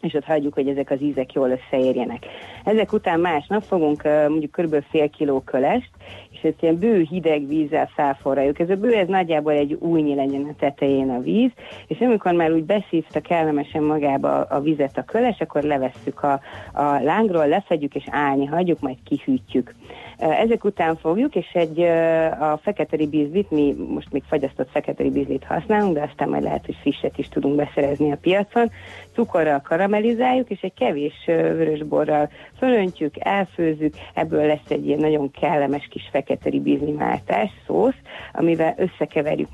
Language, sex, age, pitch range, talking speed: Hungarian, female, 40-59, 145-180 Hz, 160 wpm